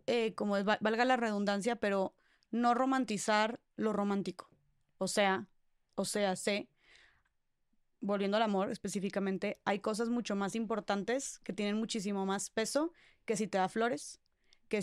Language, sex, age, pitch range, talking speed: Spanish, female, 20-39, 205-240 Hz, 150 wpm